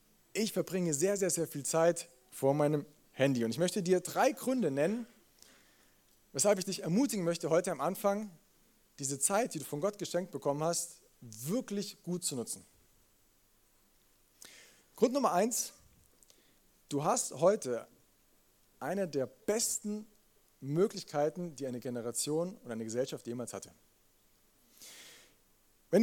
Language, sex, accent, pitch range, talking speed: German, male, German, 145-210 Hz, 130 wpm